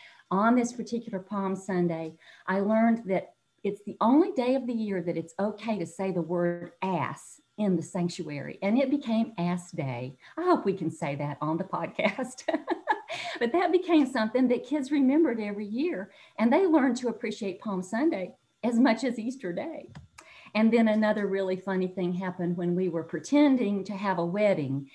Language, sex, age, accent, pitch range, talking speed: English, female, 50-69, American, 175-235 Hz, 185 wpm